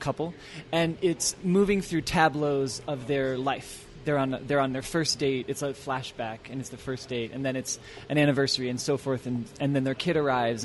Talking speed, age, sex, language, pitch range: 215 wpm, 20-39, male, English, 130-155 Hz